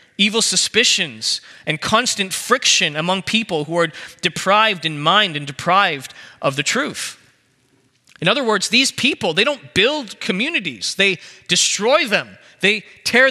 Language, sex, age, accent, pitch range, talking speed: English, male, 30-49, American, 180-235 Hz, 140 wpm